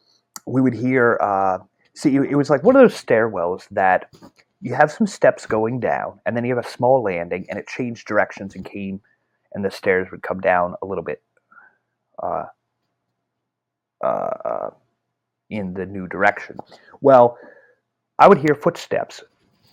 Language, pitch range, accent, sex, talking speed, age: English, 105-150 Hz, American, male, 160 wpm, 30-49